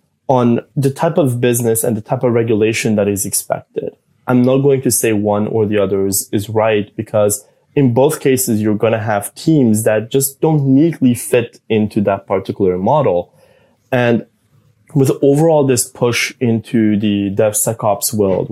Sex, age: male, 20-39